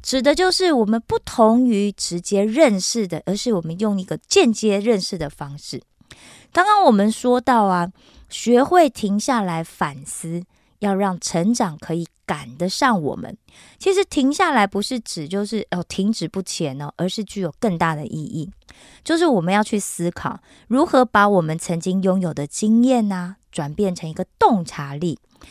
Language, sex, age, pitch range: Korean, female, 20-39, 175-250 Hz